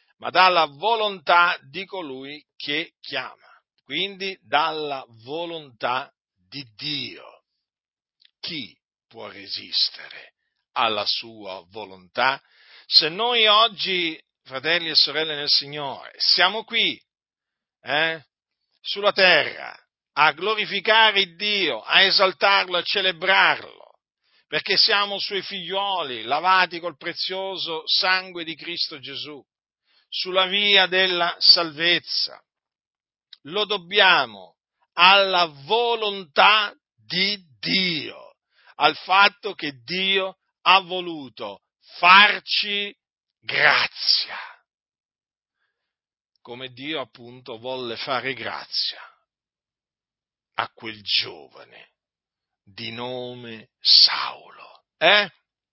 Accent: native